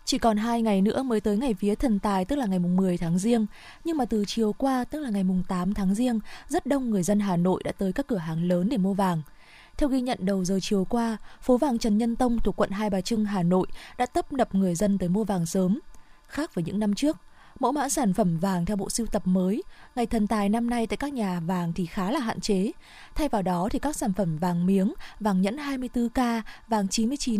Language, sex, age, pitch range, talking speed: Vietnamese, female, 20-39, 190-240 Hz, 250 wpm